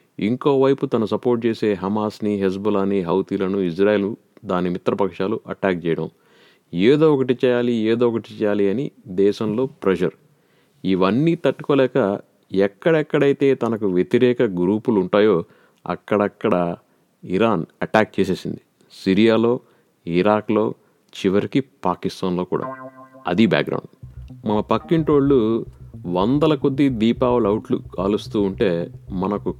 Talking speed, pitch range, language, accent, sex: 100 wpm, 95-130 Hz, Telugu, native, male